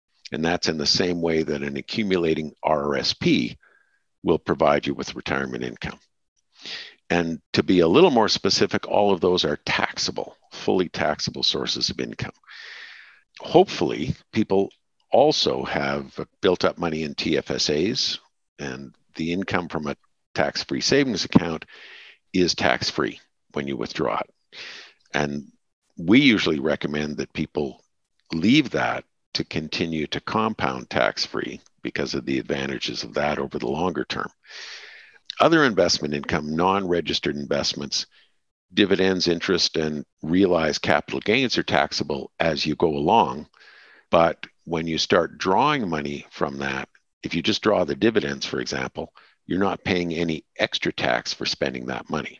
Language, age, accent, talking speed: English, 50-69, American, 140 wpm